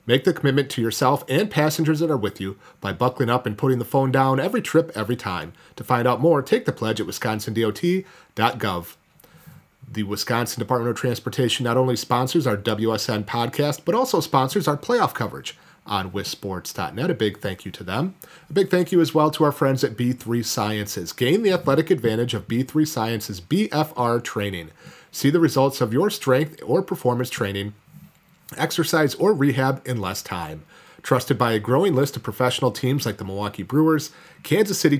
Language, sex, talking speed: English, male, 185 wpm